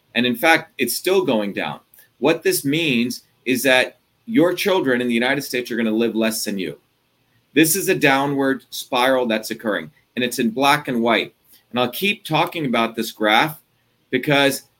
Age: 40-59